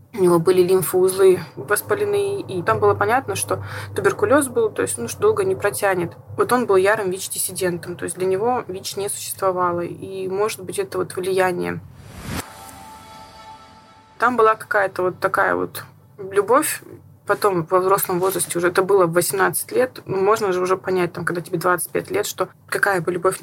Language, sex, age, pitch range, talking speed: Russian, female, 20-39, 180-220 Hz, 170 wpm